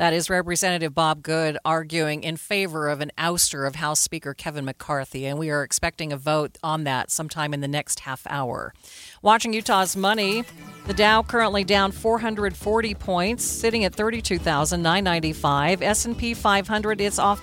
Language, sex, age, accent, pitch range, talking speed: English, female, 40-59, American, 155-205 Hz, 160 wpm